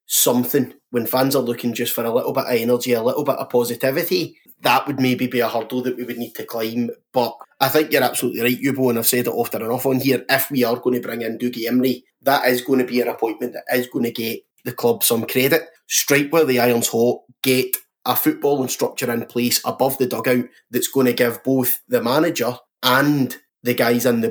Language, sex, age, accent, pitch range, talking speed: English, male, 20-39, British, 115-130 Hz, 235 wpm